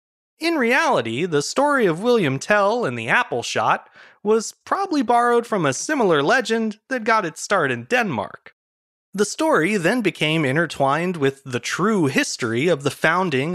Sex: male